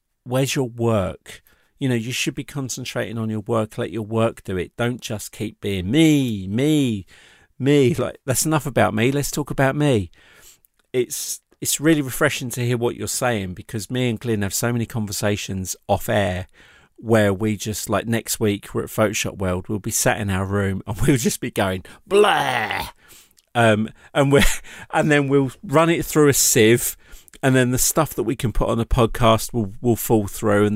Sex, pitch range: male, 105-125 Hz